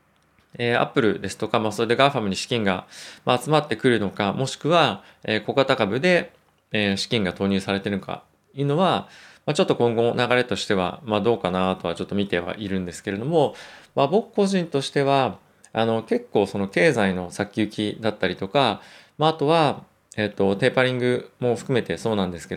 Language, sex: Japanese, male